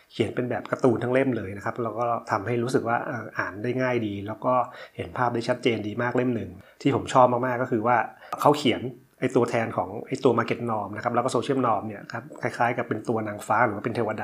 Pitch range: 110-130 Hz